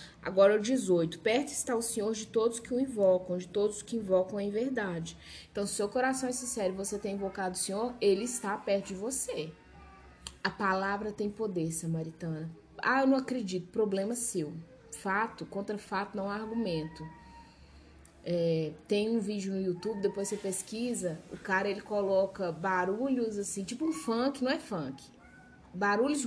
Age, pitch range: 20-39, 175-225 Hz